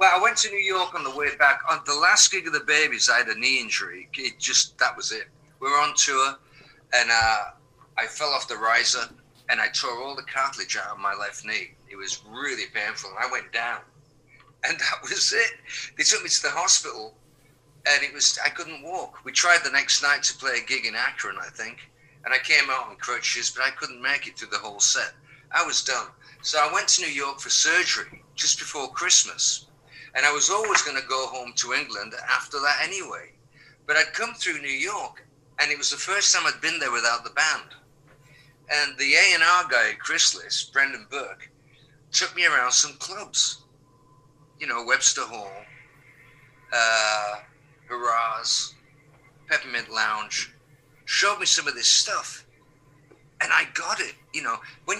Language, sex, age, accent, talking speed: English, male, 50-69, British, 195 wpm